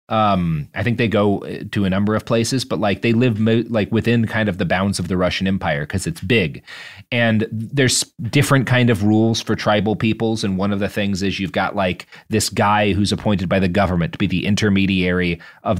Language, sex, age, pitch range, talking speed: English, male, 30-49, 100-135 Hz, 215 wpm